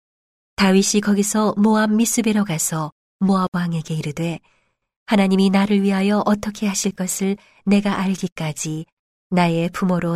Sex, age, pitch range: female, 40-59, 165-205 Hz